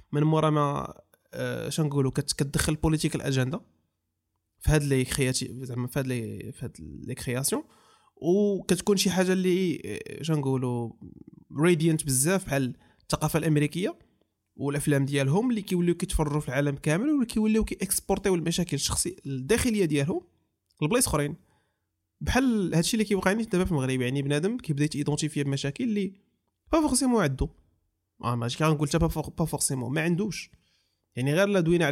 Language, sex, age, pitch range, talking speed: Arabic, male, 20-39, 130-185 Hz, 135 wpm